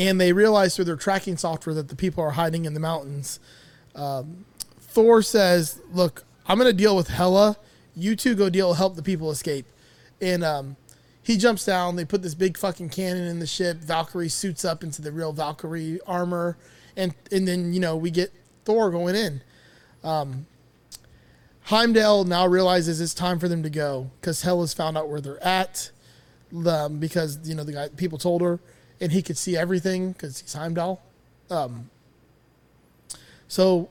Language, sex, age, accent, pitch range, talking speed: English, male, 20-39, American, 160-190 Hz, 180 wpm